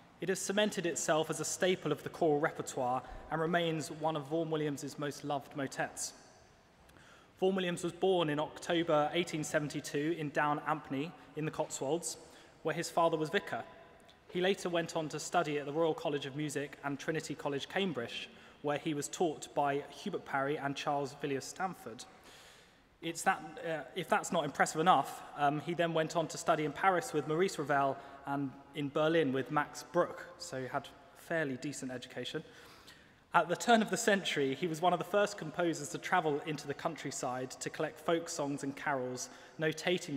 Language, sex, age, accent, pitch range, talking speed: English, male, 20-39, British, 140-170 Hz, 180 wpm